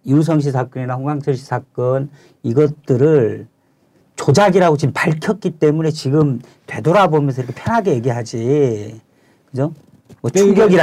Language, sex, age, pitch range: Korean, male, 40-59, 130-175 Hz